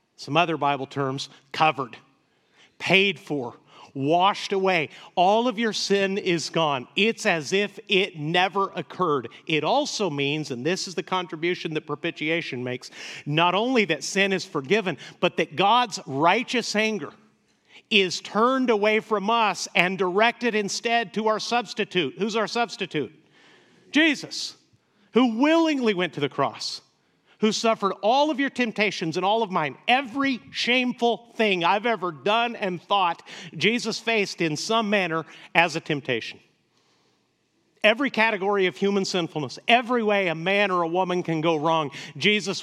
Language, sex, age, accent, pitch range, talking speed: English, male, 50-69, American, 160-210 Hz, 150 wpm